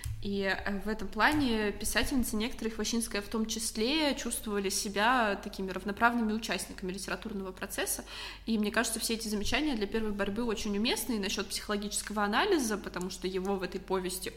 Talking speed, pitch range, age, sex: 160 wpm, 200-230 Hz, 20-39, female